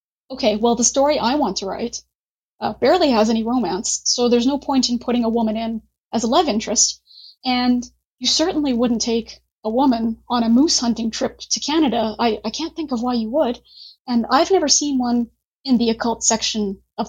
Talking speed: 200 wpm